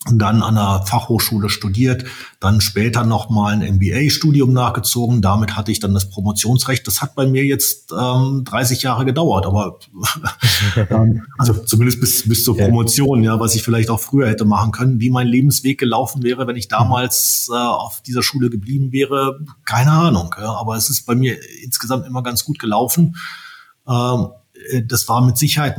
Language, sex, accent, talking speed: German, male, German, 175 wpm